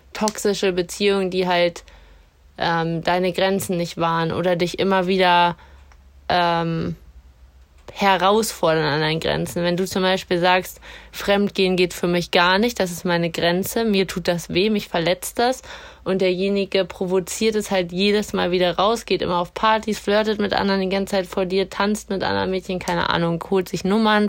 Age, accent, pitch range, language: 20-39, German, 175-195 Hz, German